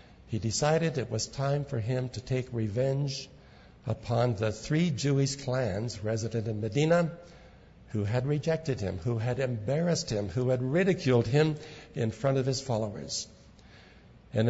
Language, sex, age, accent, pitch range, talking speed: English, male, 60-79, American, 110-140 Hz, 150 wpm